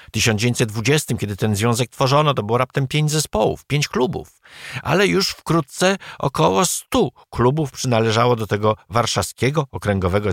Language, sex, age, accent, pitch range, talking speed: Polish, male, 50-69, native, 105-135 Hz, 135 wpm